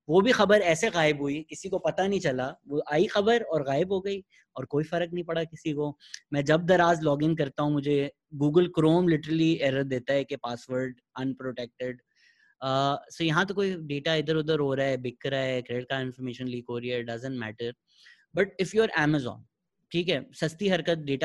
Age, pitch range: 20-39, 130-175 Hz